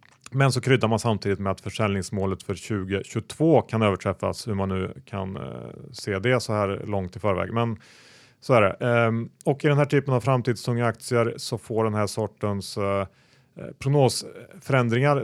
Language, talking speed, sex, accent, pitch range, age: Swedish, 160 wpm, male, Norwegian, 105-125 Hz, 30-49